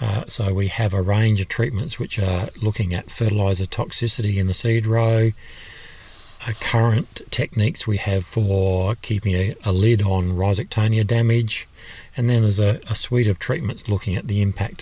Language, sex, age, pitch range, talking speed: English, male, 40-59, 95-115 Hz, 175 wpm